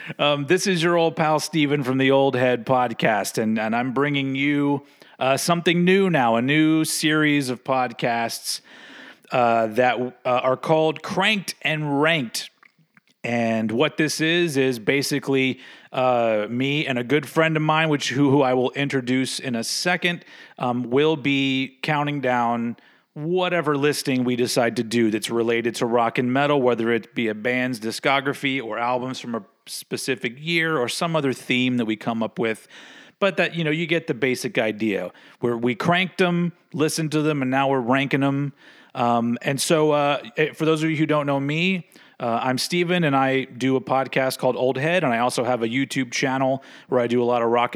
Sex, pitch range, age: male, 125-155 Hz, 30-49